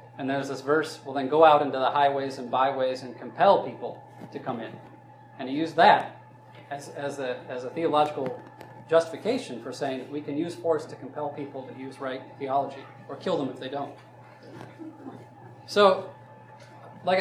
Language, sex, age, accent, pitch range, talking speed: English, male, 30-49, American, 125-155 Hz, 180 wpm